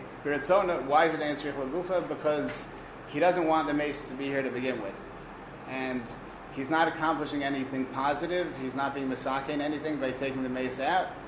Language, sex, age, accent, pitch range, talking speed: English, male, 30-49, American, 130-150 Hz, 175 wpm